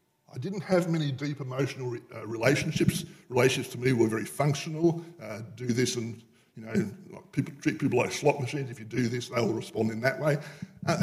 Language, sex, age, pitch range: English, male, 50-69, 125-170 Hz